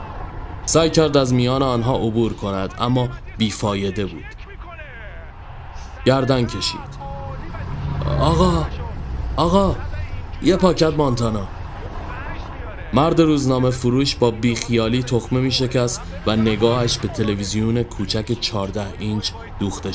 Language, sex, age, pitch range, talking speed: Persian, male, 30-49, 90-130 Hz, 100 wpm